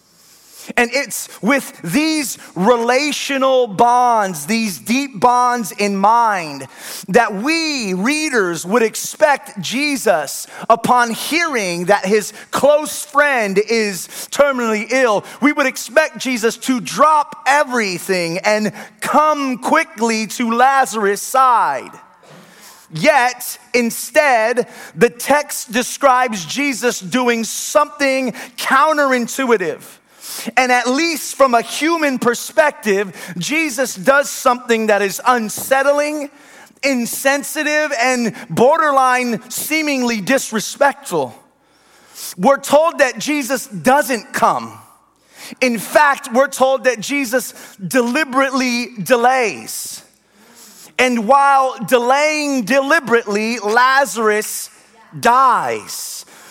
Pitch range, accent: 225-280 Hz, American